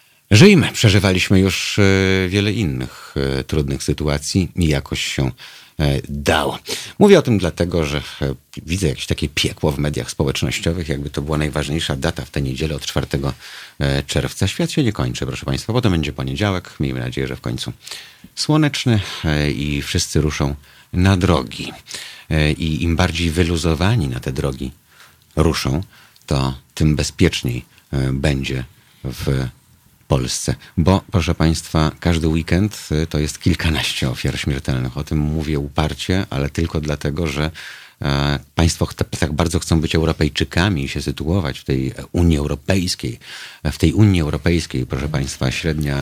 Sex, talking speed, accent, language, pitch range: male, 140 wpm, native, Polish, 70-85 Hz